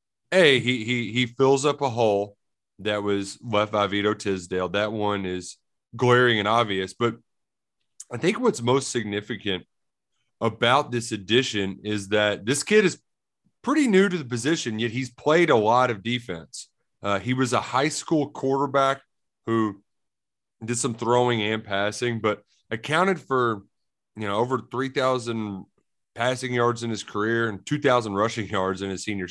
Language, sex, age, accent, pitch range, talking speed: English, male, 30-49, American, 105-135 Hz, 160 wpm